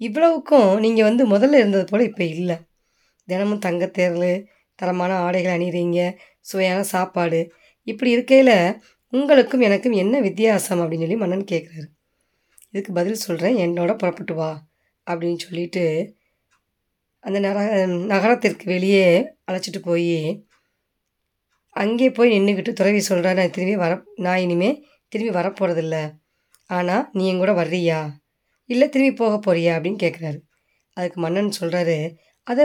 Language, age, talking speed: Tamil, 20-39, 120 wpm